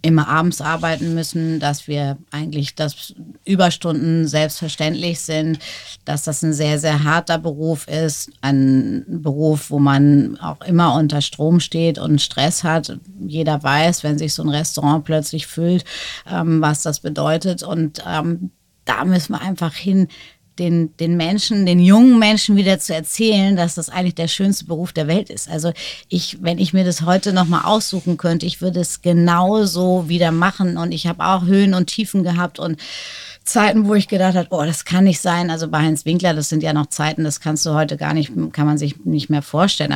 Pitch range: 155-180 Hz